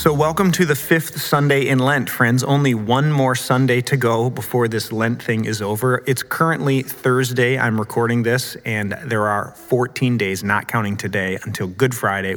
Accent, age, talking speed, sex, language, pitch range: American, 30-49, 185 wpm, male, English, 115-140 Hz